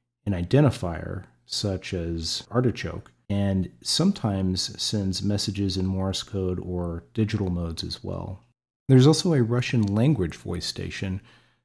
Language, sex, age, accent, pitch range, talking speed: English, male, 40-59, American, 85-105 Hz, 125 wpm